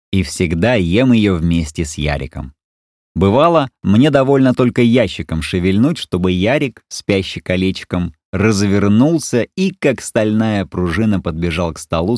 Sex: male